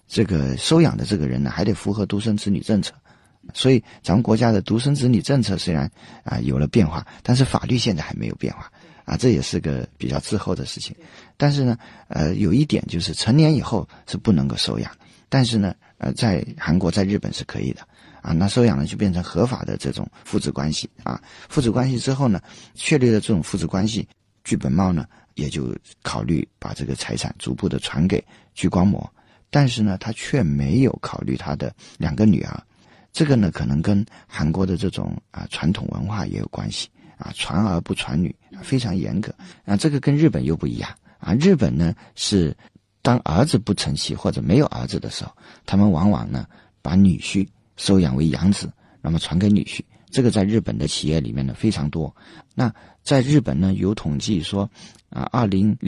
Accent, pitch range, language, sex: native, 90-120 Hz, Chinese, male